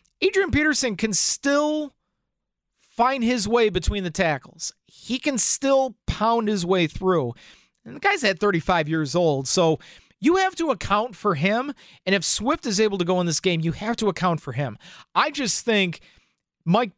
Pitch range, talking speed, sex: 170-230 Hz, 180 wpm, male